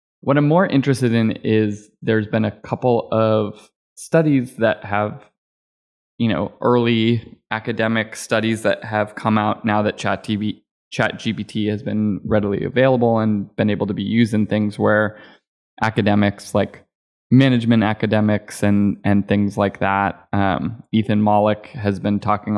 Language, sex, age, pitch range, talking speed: English, male, 20-39, 100-110 Hz, 150 wpm